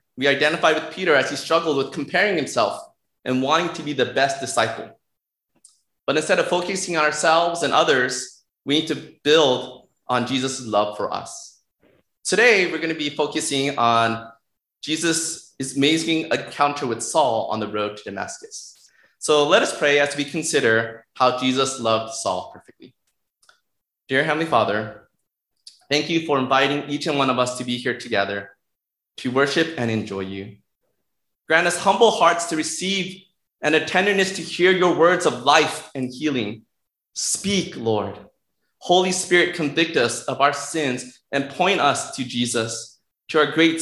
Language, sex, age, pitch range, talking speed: English, male, 20-39, 120-160 Hz, 160 wpm